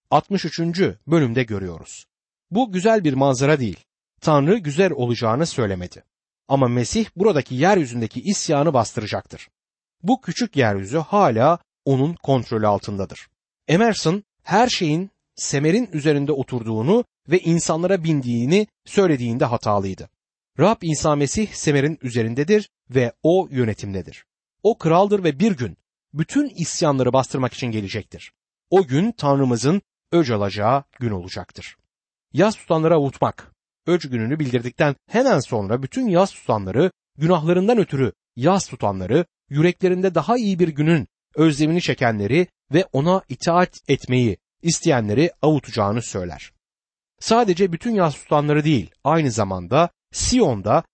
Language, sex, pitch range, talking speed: Turkish, male, 120-180 Hz, 115 wpm